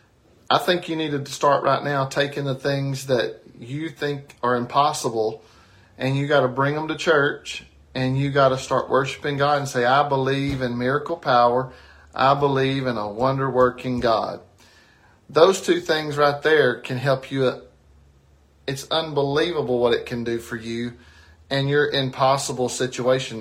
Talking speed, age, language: 165 wpm, 40-59, English